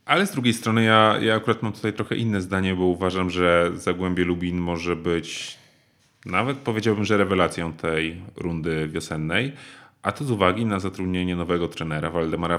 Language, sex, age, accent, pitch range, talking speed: Polish, male, 30-49, native, 85-100 Hz, 165 wpm